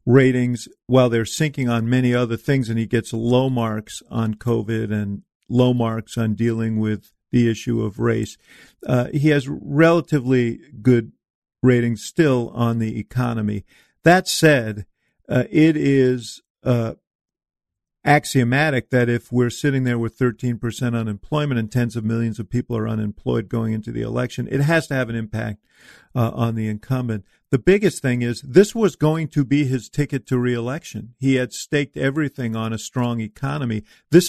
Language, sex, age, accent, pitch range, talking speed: English, male, 50-69, American, 115-135 Hz, 165 wpm